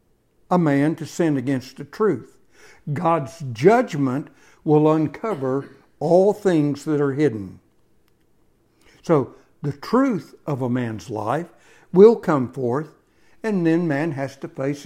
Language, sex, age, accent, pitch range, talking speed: English, male, 60-79, American, 130-165 Hz, 130 wpm